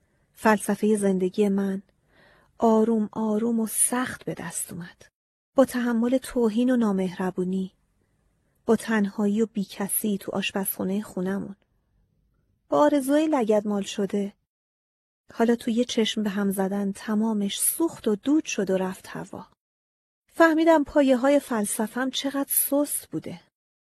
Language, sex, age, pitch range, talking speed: Persian, female, 40-59, 195-255 Hz, 125 wpm